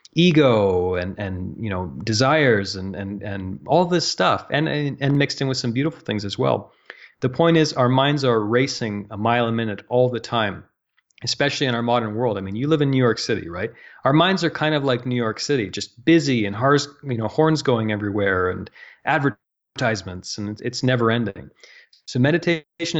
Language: English